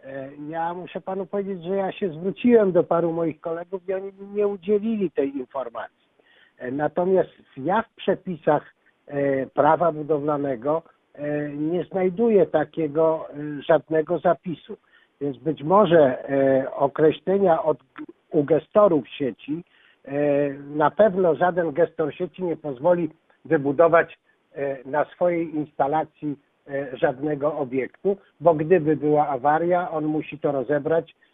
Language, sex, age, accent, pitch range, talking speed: Polish, male, 60-79, native, 140-170 Hz, 110 wpm